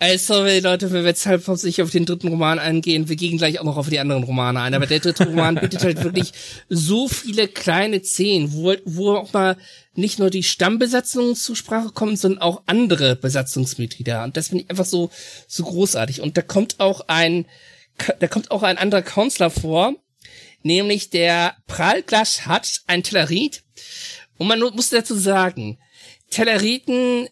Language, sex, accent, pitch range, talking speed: German, male, German, 165-225 Hz, 180 wpm